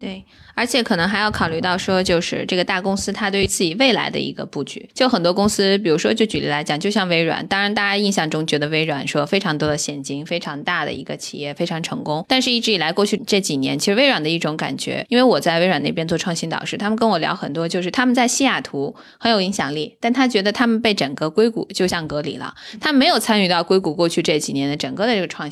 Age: 20-39